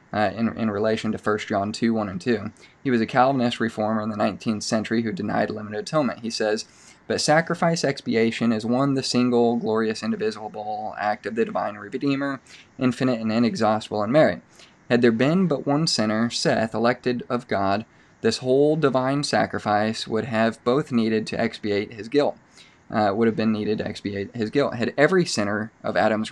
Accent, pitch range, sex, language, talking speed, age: American, 110-125 Hz, male, English, 185 wpm, 20-39